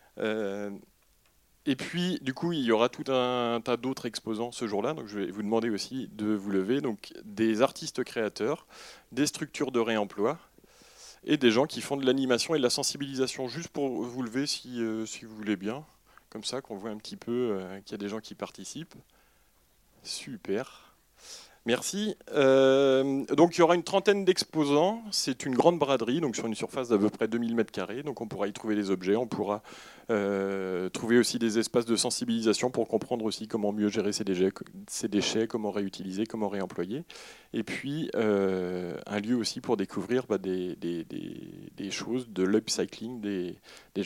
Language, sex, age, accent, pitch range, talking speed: French, male, 30-49, French, 105-135 Hz, 175 wpm